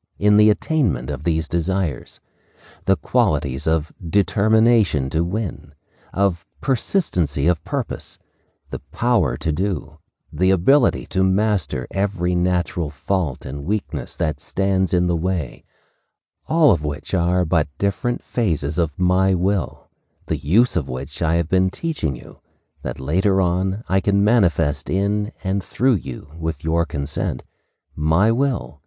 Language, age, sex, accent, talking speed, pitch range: English, 50-69, male, American, 140 wpm, 80-100 Hz